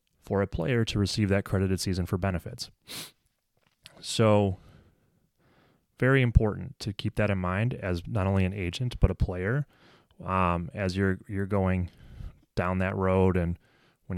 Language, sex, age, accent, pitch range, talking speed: English, male, 30-49, American, 90-105 Hz, 150 wpm